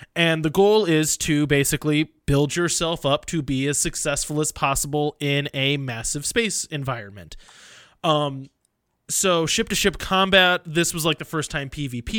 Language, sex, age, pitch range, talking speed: English, male, 20-39, 145-175 Hz, 155 wpm